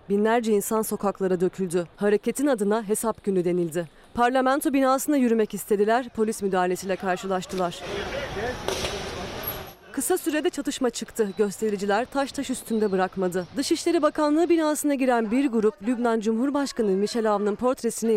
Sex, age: female, 30-49